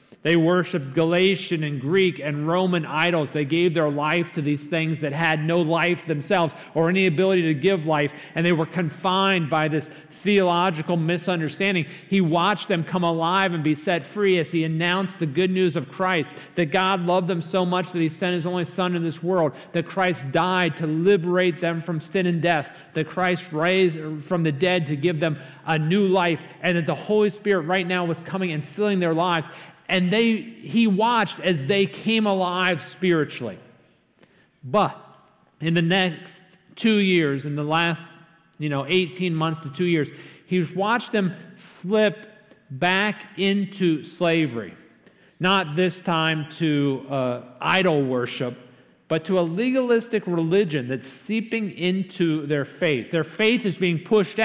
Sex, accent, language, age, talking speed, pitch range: male, American, English, 40-59, 170 wpm, 160-190 Hz